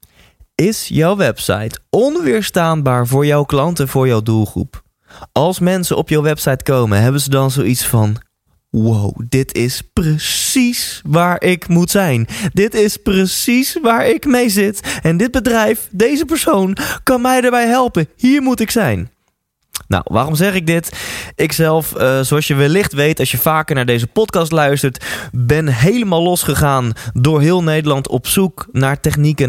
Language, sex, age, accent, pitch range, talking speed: Dutch, male, 20-39, Dutch, 125-180 Hz, 160 wpm